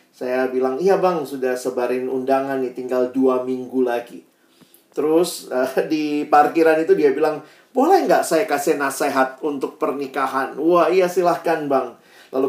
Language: Indonesian